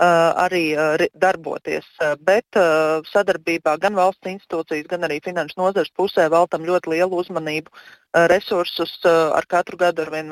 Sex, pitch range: female, 165-195 Hz